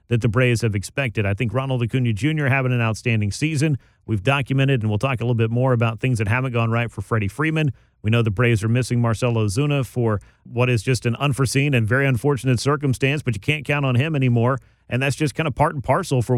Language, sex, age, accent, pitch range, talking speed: English, male, 40-59, American, 115-145 Hz, 240 wpm